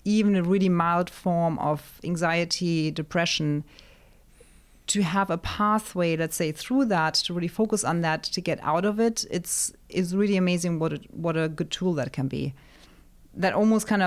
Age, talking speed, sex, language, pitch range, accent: 30-49, 175 wpm, female, English, 160-190 Hz, German